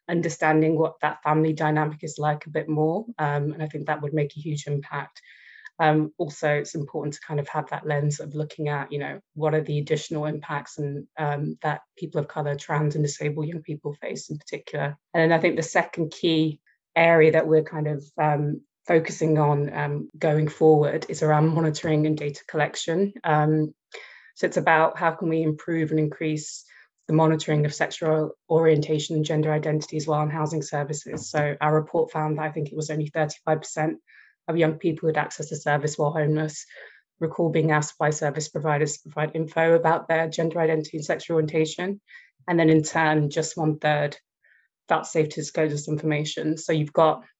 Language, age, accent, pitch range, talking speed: English, 20-39, British, 150-160 Hz, 195 wpm